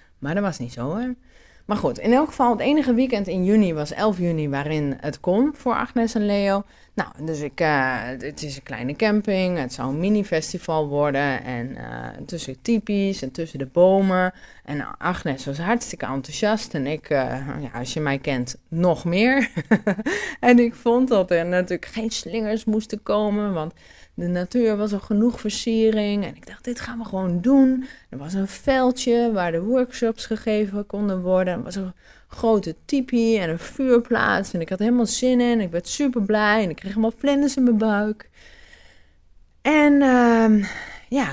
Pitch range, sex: 160-235 Hz, female